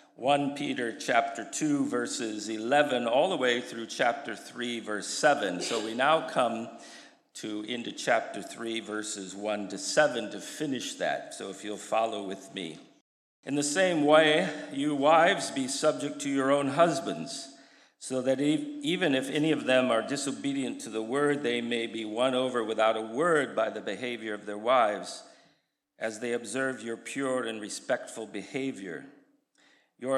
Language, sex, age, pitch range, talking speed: English, male, 50-69, 110-140 Hz, 165 wpm